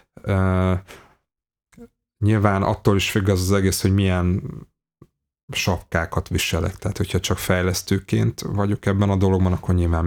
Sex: male